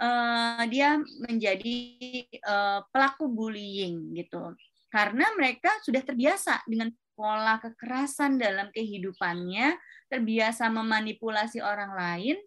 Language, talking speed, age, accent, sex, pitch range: Indonesian, 85 wpm, 20-39, native, female, 200-275 Hz